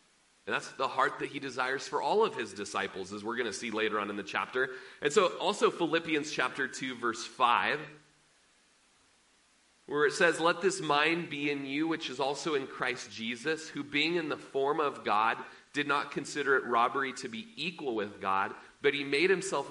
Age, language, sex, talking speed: 30-49, English, male, 200 wpm